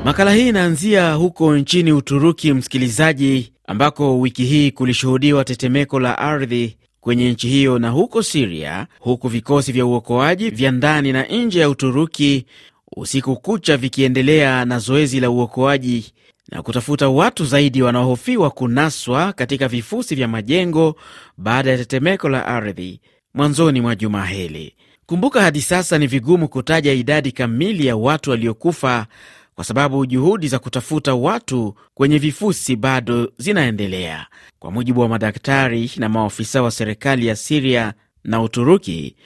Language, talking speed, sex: Swahili, 135 wpm, male